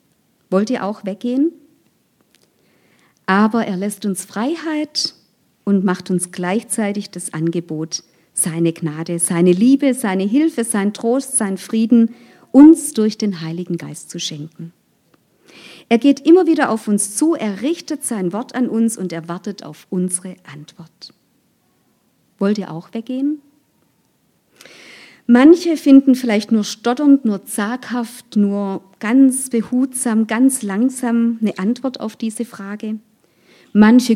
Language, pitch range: German, 190-250 Hz